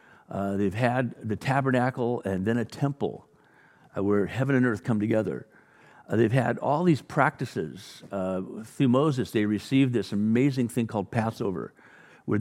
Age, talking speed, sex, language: 50-69, 160 wpm, male, English